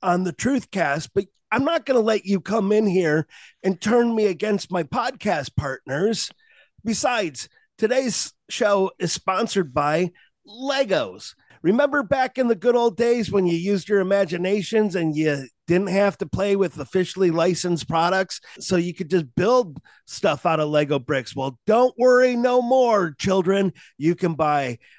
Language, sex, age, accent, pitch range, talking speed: English, male, 30-49, American, 160-225 Hz, 165 wpm